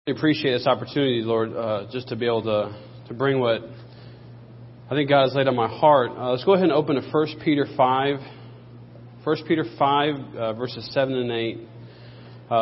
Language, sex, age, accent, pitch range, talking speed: English, male, 40-59, American, 120-140 Hz, 185 wpm